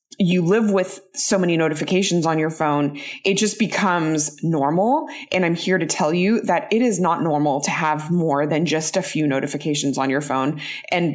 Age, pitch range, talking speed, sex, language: 20-39, 160-200 Hz, 195 wpm, female, English